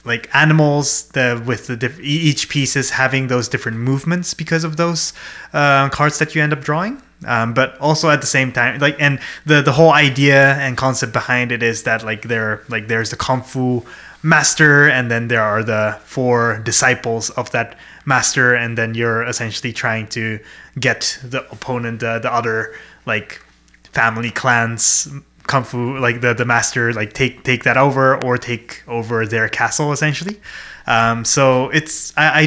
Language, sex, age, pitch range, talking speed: English, male, 20-39, 115-145 Hz, 175 wpm